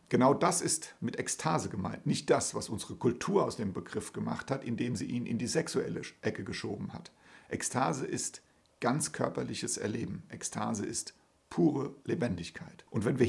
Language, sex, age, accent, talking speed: German, male, 60-79, German, 165 wpm